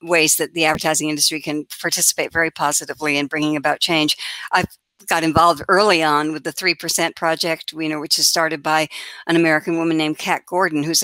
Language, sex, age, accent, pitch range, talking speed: English, female, 60-79, American, 150-180 Hz, 195 wpm